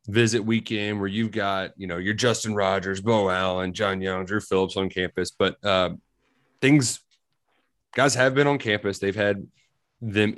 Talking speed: 170 wpm